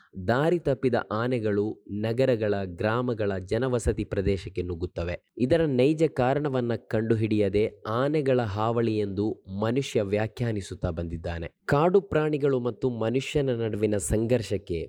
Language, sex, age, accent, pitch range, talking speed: Kannada, male, 20-39, native, 100-125 Hz, 95 wpm